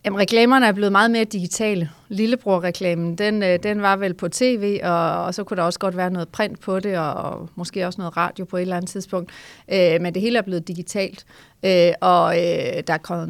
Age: 30-49